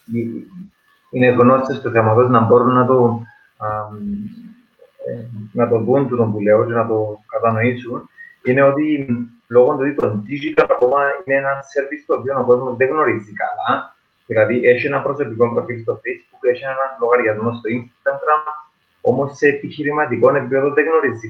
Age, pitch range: 30-49, 115-150 Hz